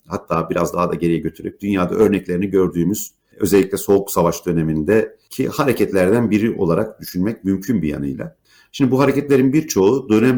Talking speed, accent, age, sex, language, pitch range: 145 wpm, native, 50-69, male, Turkish, 90-125 Hz